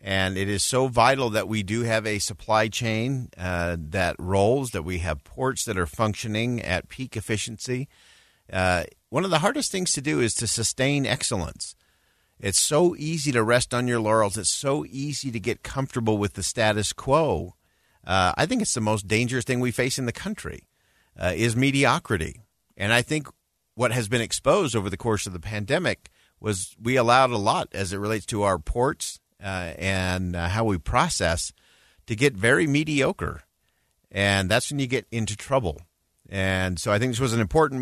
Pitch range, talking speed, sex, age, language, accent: 95-135 Hz, 190 wpm, male, 50-69, English, American